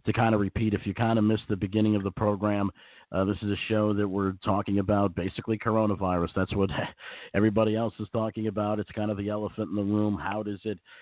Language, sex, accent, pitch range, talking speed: English, male, American, 95-105 Hz, 235 wpm